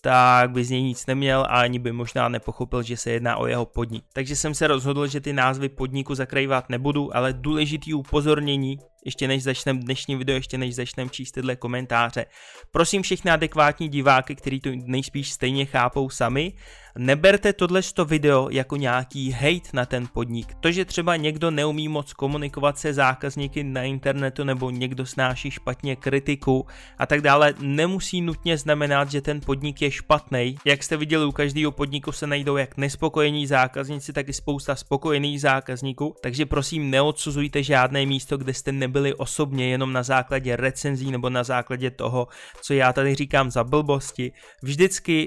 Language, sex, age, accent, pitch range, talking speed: Czech, male, 20-39, native, 125-145 Hz, 170 wpm